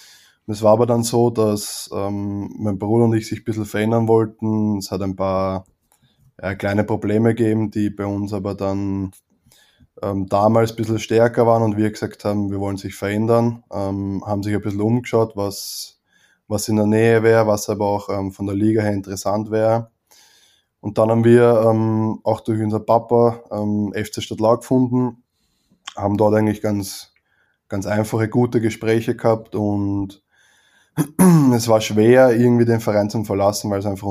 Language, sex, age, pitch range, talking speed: German, male, 20-39, 100-115 Hz, 175 wpm